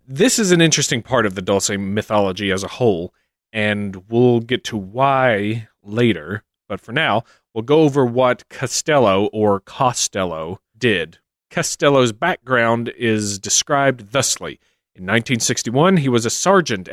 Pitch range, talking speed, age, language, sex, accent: 105-135 Hz, 140 wpm, 30-49, English, male, American